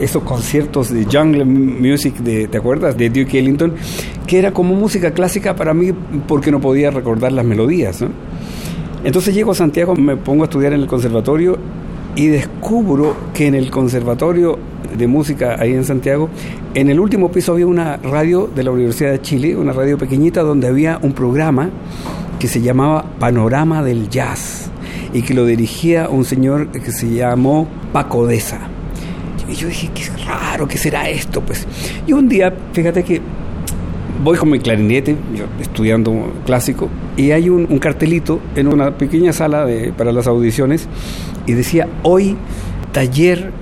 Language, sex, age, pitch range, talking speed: Spanish, male, 50-69, 125-165 Hz, 165 wpm